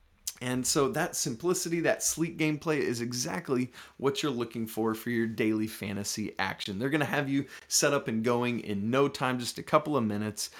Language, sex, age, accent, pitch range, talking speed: English, male, 30-49, American, 115-165 Hz, 200 wpm